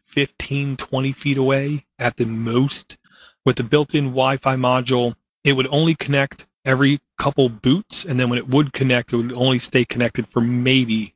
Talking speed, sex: 185 wpm, male